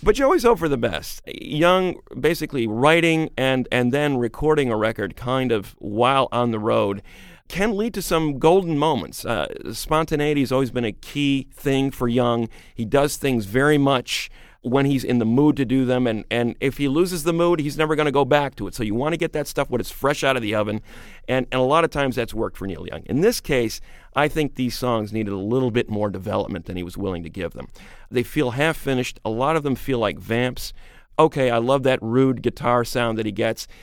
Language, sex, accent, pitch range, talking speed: English, male, American, 105-140 Hz, 230 wpm